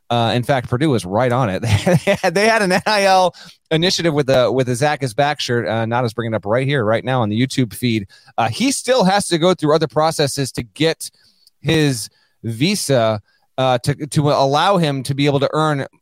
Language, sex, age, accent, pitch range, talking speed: English, male, 30-49, American, 125-170 Hz, 220 wpm